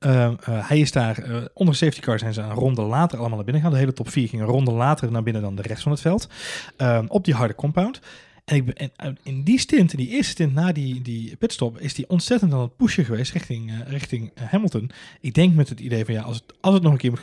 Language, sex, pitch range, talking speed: Dutch, male, 120-155 Hz, 275 wpm